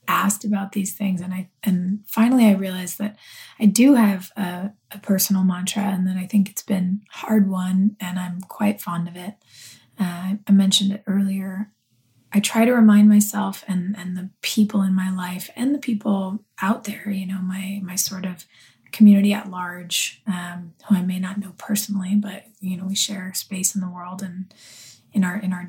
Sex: female